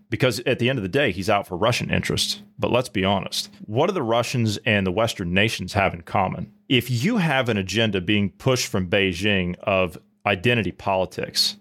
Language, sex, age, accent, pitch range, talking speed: English, male, 30-49, American, 100-125 Hz, 200 wpm